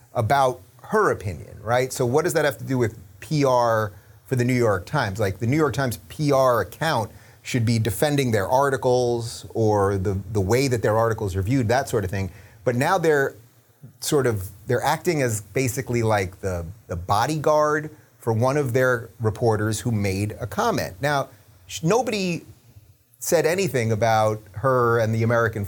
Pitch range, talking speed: 105-135 Hz, 175 wpm